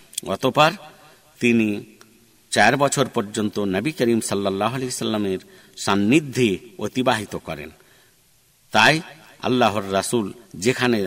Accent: native